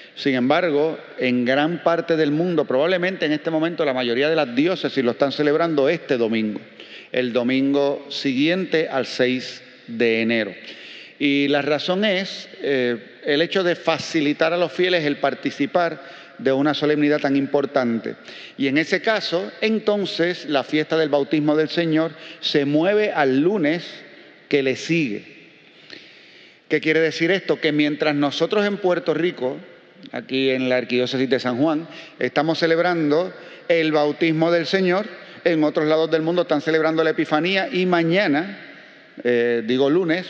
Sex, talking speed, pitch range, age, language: male, 150 wpm, 135-170 Hz, 40-59, Spanish